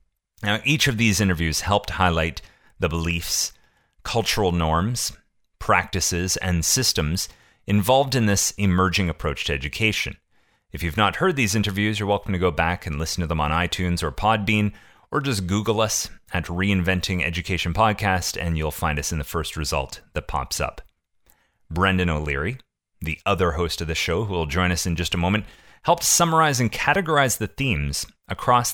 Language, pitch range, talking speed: English, 85-105 Hz, 170 wpm